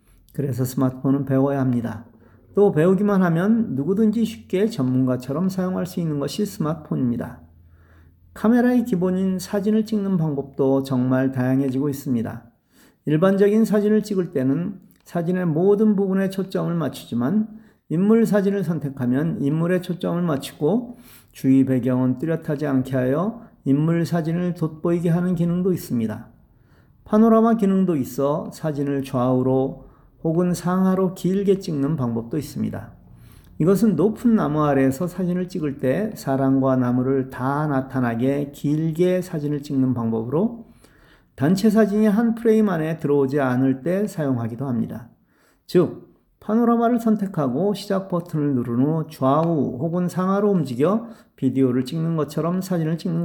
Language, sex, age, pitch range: Korean, male, 40-59, 130-190 Hz